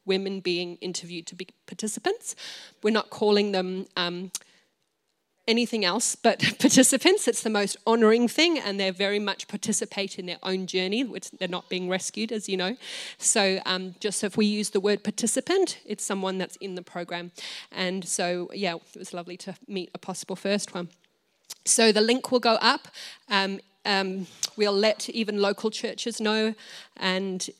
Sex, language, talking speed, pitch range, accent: female, English, 175 wpm, 185-220 Hz, Australian